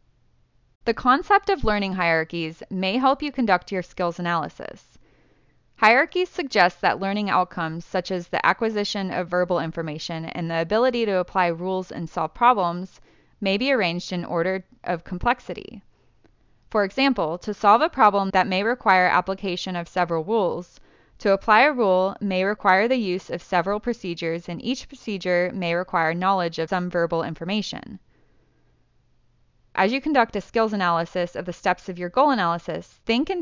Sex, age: female, 20-39